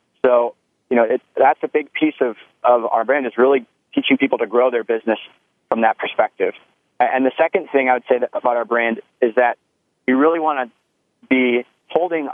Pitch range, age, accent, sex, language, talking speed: 120-145 Hz, 30-49, American, male, English, 205 wpm